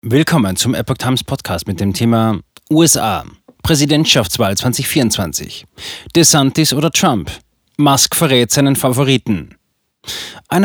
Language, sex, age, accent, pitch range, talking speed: German, male, 30-49, German, 110-140 Hz, 105 wpm